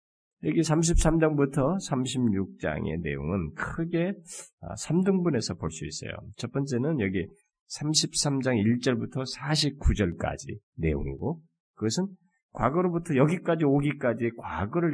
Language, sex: Korean, male